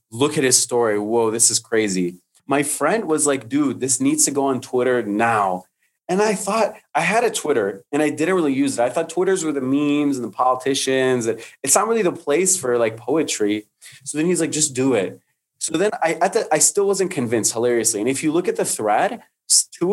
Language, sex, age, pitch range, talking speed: English, male, 30-49, 120-170 Hz, 230 wpm